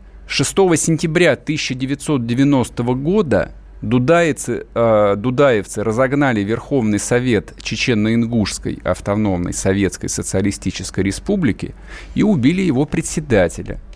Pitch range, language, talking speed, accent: 90-135 Hz, Russian, 75 wpm, native